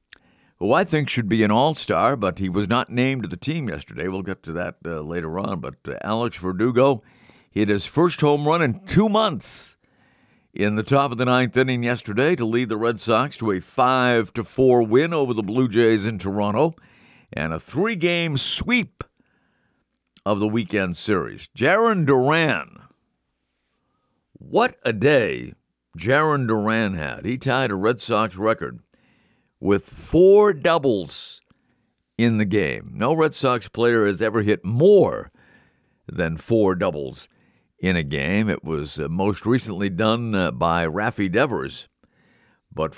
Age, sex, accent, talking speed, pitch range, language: 50-69, male, American, 155 wpm, 95-130 Hz, English